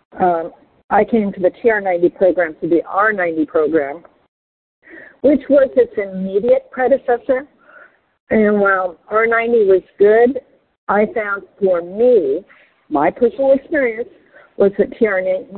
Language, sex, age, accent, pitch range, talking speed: English, female, 50-69, American, 175-220 Hz, 120 wpm